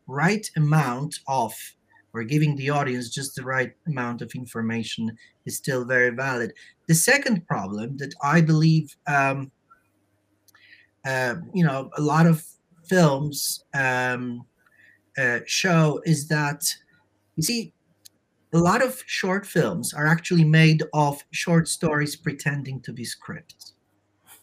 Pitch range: 130-165 Hz